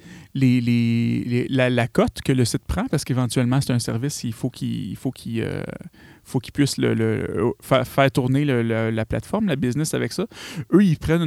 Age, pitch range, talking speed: 30-49, 120-145 Hz, 215 wpm